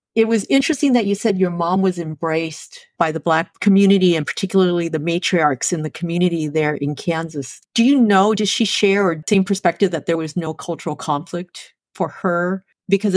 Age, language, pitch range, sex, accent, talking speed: 50-69, English, 155-195 Hz, female, American, 190 wpm